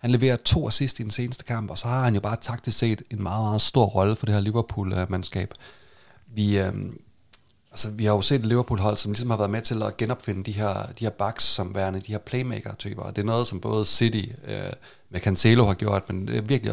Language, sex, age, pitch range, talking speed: Danish, male, 30-49, 100-120 Hz, 240 wpm